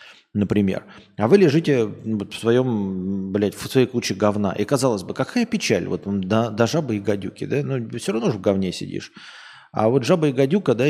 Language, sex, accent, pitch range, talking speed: Russian, male, native, 100-140 Hz, 200 wpm